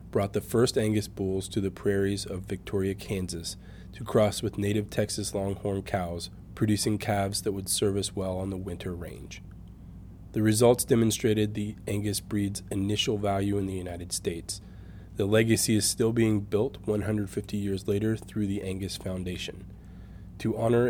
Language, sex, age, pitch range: English, male, 20-39, 95-110 Hz